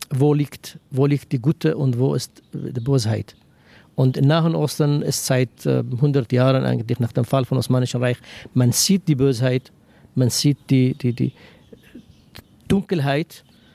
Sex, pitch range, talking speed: male, 125-150 Hz, 155 wpm